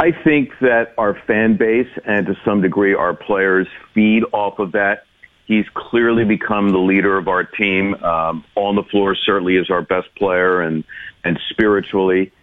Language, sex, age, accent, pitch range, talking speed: English, male, 50-69, American, 90-105 Hz, 175 wpm